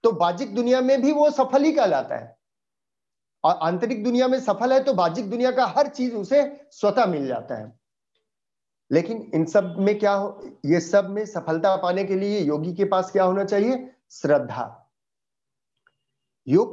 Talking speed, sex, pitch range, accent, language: 170 wpm, male, 165-250 Hz, native, Hindi